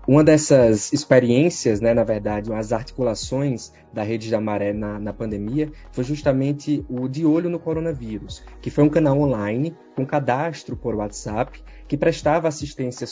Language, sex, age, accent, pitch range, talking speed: Portuguese, male, 20-39, Brazilian, 110-140 Hz, 155 wpm